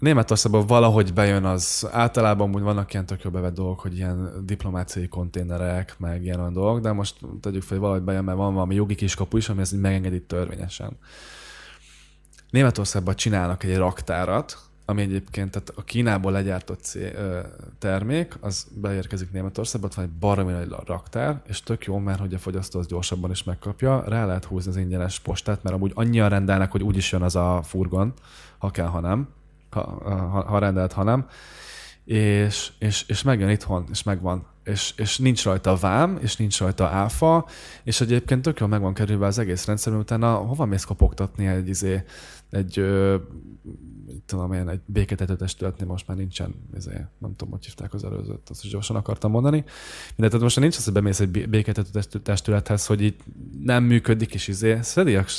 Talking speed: 170 wpm